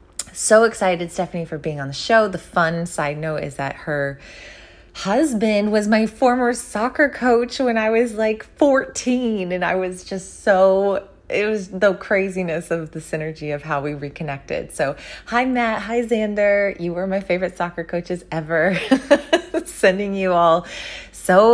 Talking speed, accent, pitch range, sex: 160 wpm, American, 160-205 Hz, female